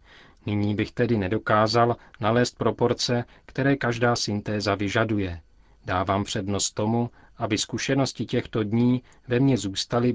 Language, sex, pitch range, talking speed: Czech, male, 100-120 Hz, 120 wpm